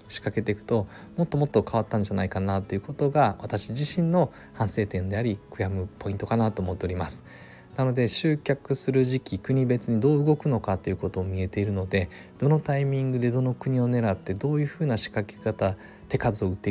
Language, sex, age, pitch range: Japanese, male, 20-39, 100-125 Hz